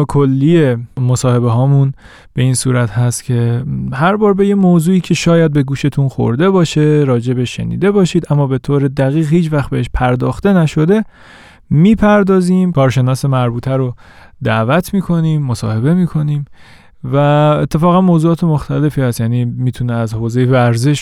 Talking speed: 145 wpm